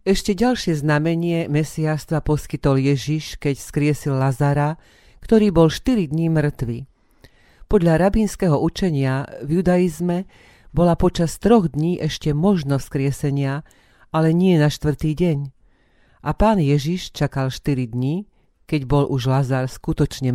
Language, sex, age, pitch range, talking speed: Slovak, female, 40-59, 135-165 Hz, 125 wpm